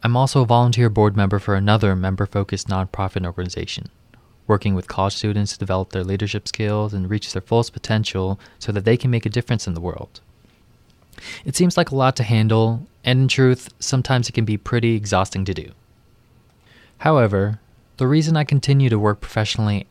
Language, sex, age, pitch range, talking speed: English, male, 20-39, 100-120 Hz, 185 wpm